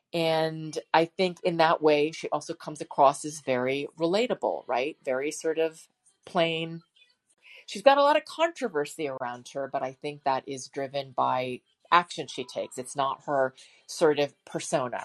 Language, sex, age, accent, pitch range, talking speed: English, female, 40-59, American, 135-170 Hz, 170 wpm